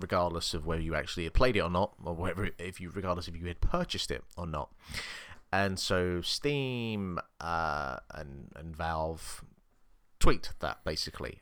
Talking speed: 170 wpm